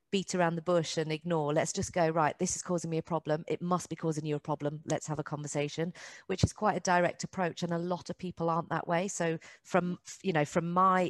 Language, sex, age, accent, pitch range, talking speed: English, female, 40-59, British, 155-185 Hz, 255 wpm